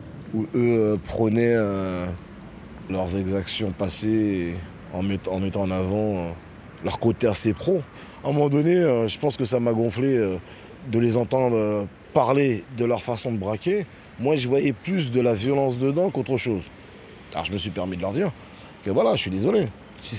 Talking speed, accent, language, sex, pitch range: 195 wpm, French, French, male, 95-125 Hz